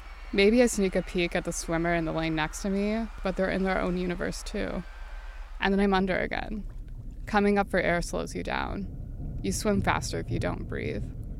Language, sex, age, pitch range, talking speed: English, female, 20-39, 170-190 Hz, 210 wpm